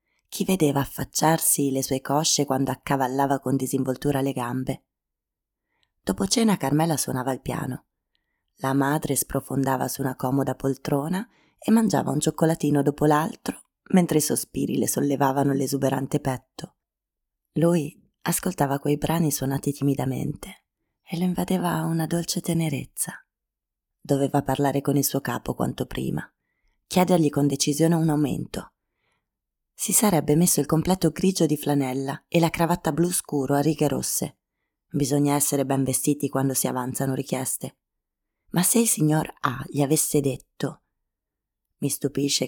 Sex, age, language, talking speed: female, 20-39, Italian, 135 wpm